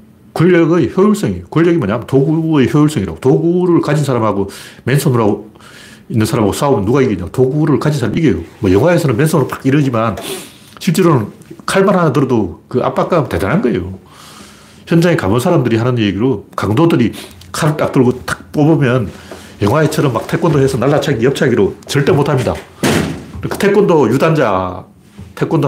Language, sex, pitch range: Korean, male, 100-150 Hz